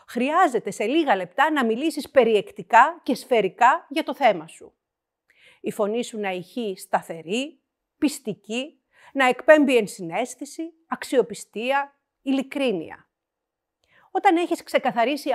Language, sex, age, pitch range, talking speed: Greek, female, 50-69, 210-305 Hz, 110 wpm